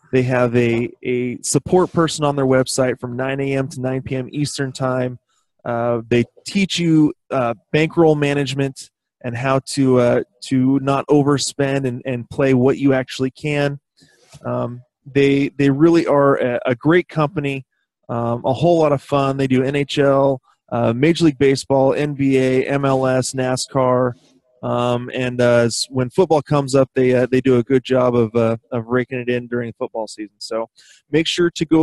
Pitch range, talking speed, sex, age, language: 125-145 Hz, 175 wpm, male, 30-49, English